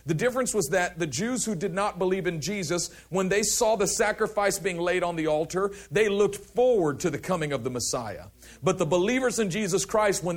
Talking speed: 220 wpm